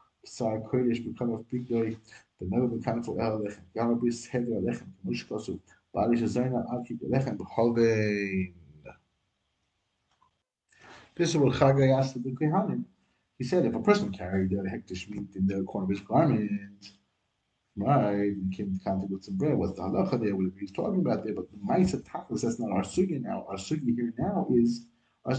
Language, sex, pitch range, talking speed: English, male, 105-130 Hz, 105 wpm